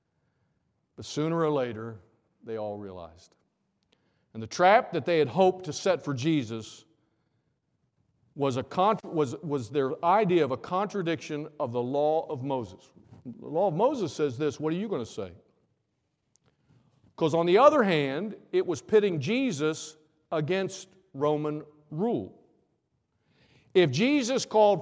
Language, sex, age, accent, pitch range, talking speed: English, male, 50-69, American, 140-195 Hz, 135 wpm